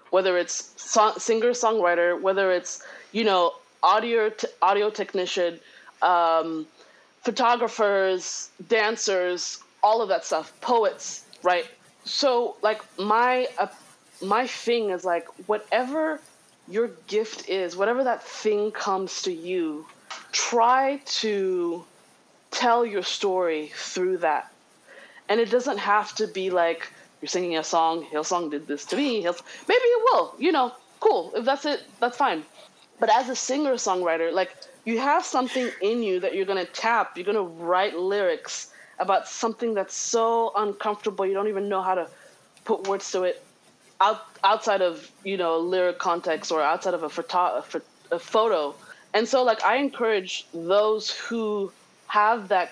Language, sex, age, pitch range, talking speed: English, female, 20-39, 180-235 Hz, 150 wpm